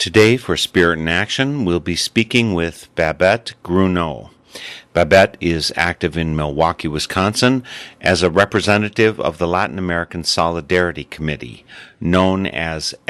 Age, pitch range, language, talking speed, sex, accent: 50-69, 85-100 Hz, English, 130 wpm, male, American